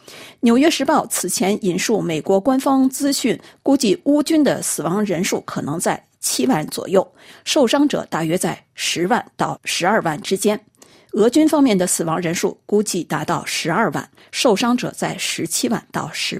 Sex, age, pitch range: female, 50-69, 185-265 Hz